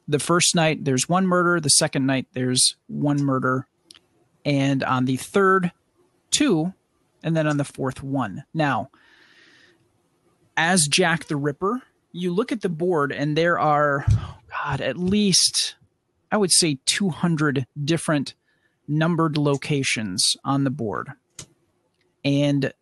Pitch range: 140-170 Hz